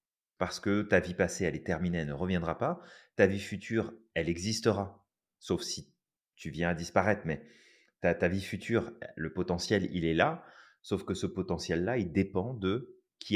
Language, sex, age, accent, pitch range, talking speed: French, male, 30-49, French, 90-115 Hz, 185 wpm